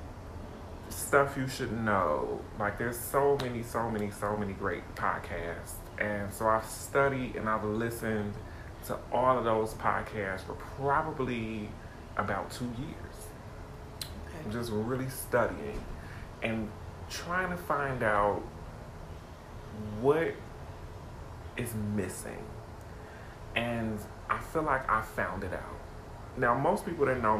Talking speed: 125 wpm